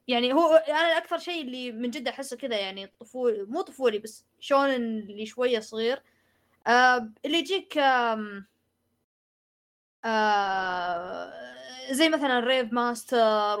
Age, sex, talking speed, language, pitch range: 20-39, female, 120 wpm, Arabic, 220-265 Hz